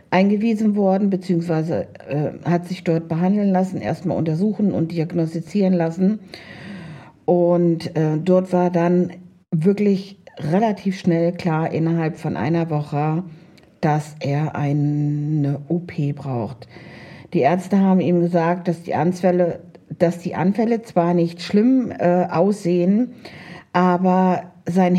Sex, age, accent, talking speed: female, 50-69, German, 115 wpm